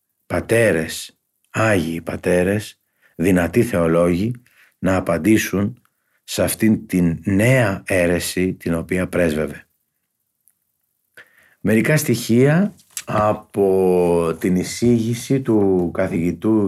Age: 50-69